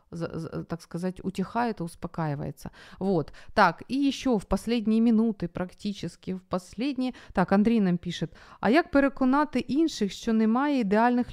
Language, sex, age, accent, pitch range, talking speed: Ukrainian, female, 30-49, native, 175-225 Hz, 140 wpm